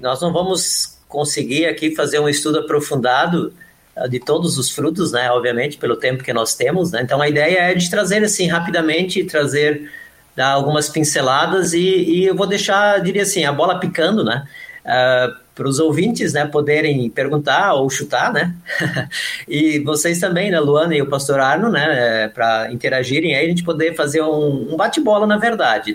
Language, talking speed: Portuguese, 170 wpm